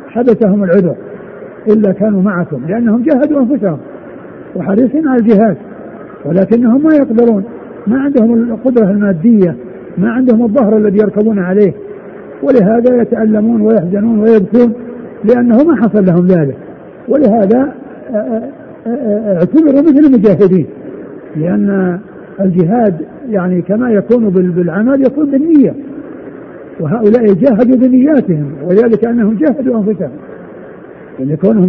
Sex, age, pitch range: male, 50-69, 195-240 Hz